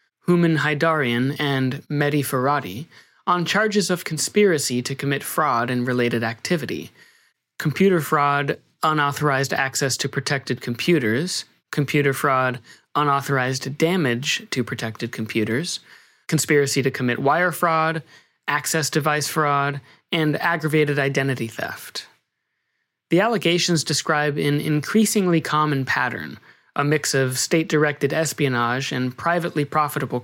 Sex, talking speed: male, 110 wpm